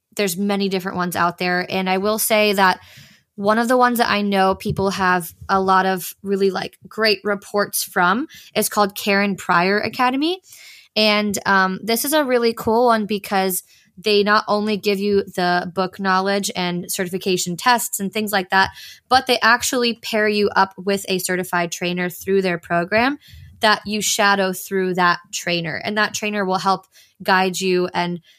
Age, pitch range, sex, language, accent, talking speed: 20-39, 185-220 Hz, female, English, American, 180 wpm